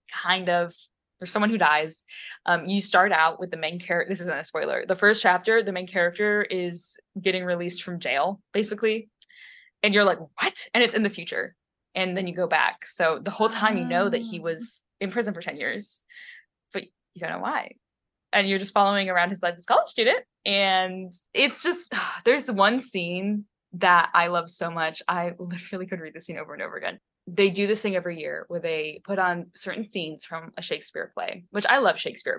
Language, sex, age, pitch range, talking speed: English, female, 10-29, 175-225 Hz, 215 wpm